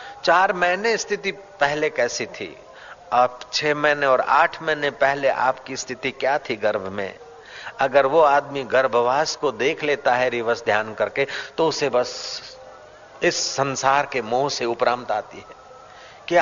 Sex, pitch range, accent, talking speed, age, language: male, 155-190 Hz, native, 155 wpm, 50-69, Hindi